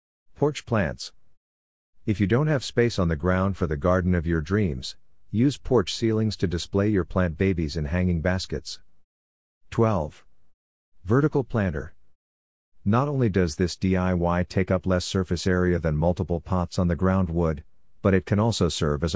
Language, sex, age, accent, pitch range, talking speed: English, male, 50-69, American, 80-100 Hz, 165 wpm